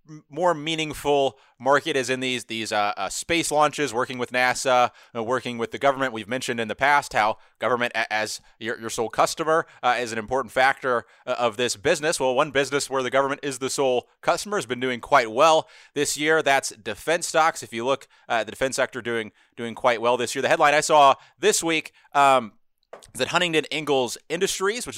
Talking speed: 195 wpm